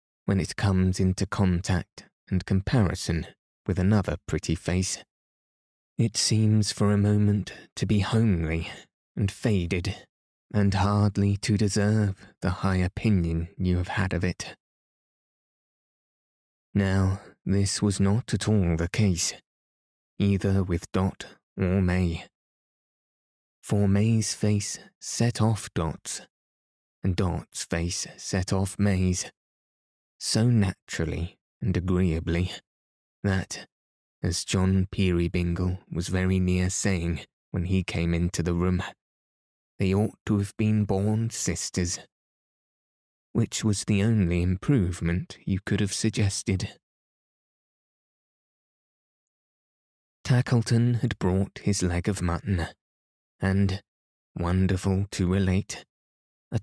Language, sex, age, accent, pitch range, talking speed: English, male, 20-39, British, 90-105 Hz, 110 wpm